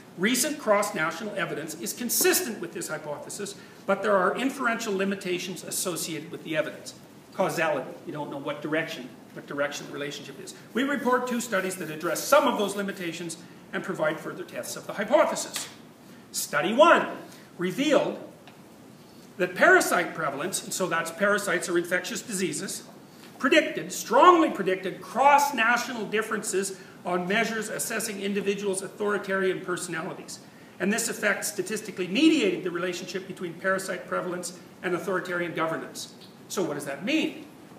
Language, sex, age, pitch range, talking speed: English, male, 40-59, 180-220 Hz, 135 wpm